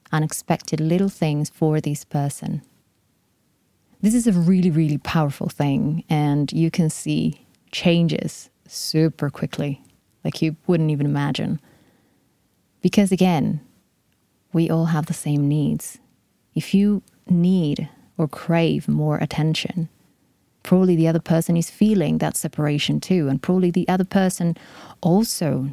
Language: English